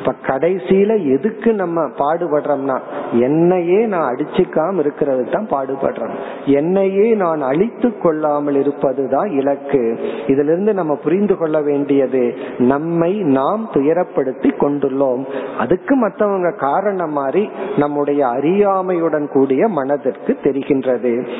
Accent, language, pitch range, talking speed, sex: native, Tamil, 140-185 Hz, 75 wpm, male